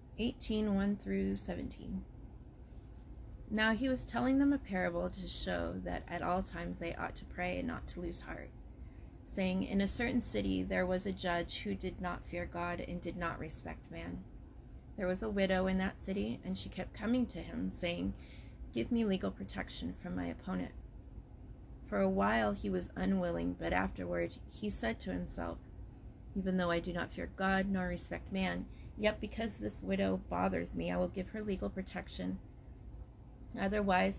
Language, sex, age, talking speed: English, female, 30-49, 170 wpm